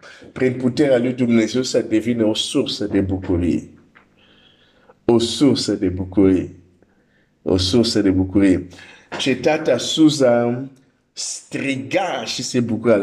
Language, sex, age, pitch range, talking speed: Romanian, male, 50-69, 95-125 Hz, 110 wpm